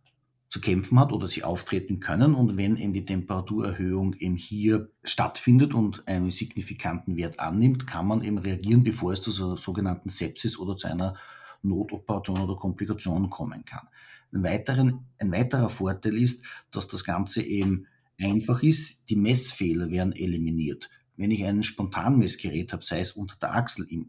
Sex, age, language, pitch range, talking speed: male, 50-69, German, 95-120 Hz, 155 wpm